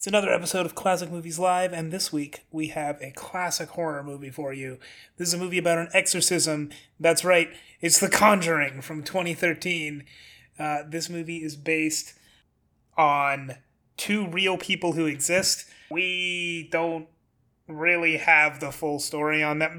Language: English